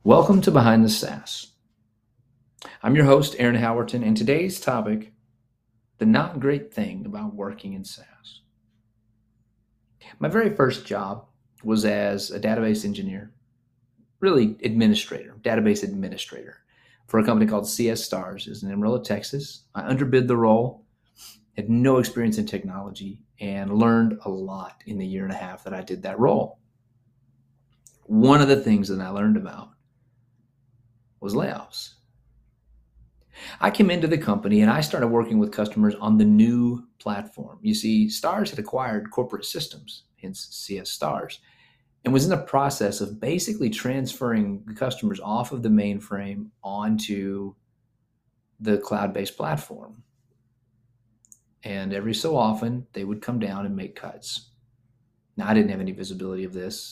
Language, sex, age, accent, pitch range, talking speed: English, male, 40-59, American, 105-135 Hz, 150 wpm